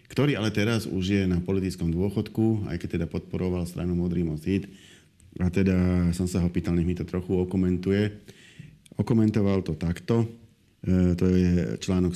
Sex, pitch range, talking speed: male, 90-105 Hz, 165 wpm